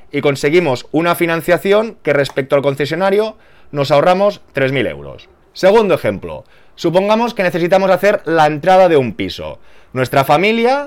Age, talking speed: 20-39, 140 wpm